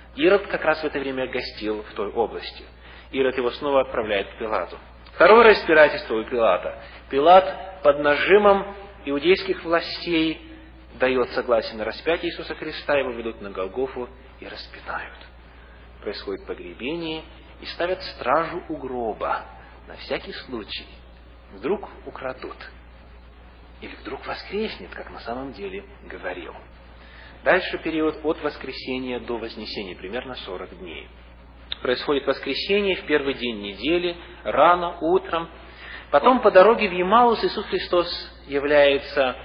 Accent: native